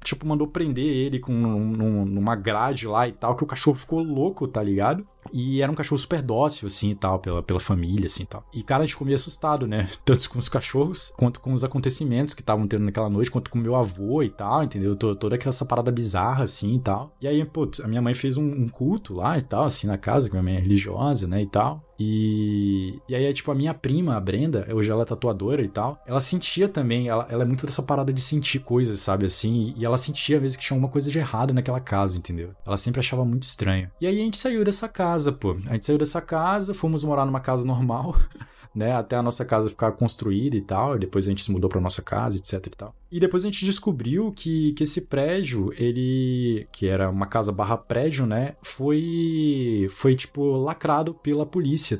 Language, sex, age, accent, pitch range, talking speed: Portuguese, male, 20-39, Brazilian, 105-145 Hz, 230 wpm